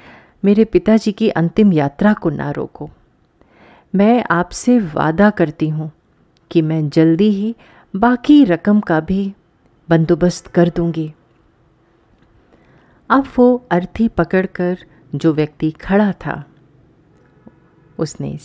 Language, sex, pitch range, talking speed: Hindi, female, 155-210 Hz, 105 wpm